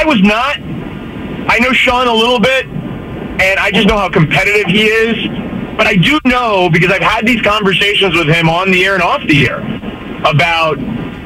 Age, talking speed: 40-59, 190 wpm